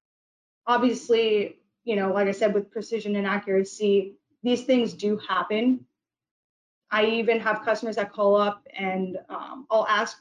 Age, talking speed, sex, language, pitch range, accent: 20-39, 145 wpm, female, English, 190-225 Hz, American